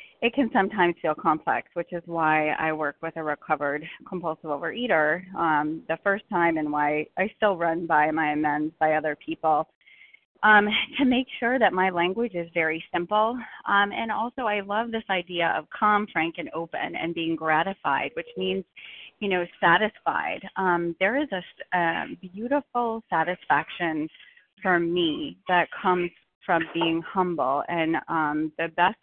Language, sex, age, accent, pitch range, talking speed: English, female, 30-49, American, 160-210 Hz, 160 wpm